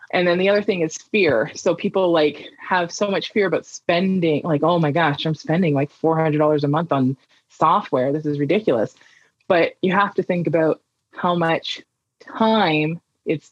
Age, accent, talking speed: 20-39, American, 180 wpm